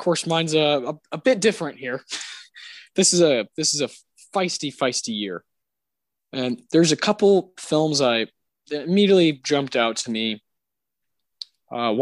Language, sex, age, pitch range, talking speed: English, male, 20-39, 110-155 Hz, 155 wpm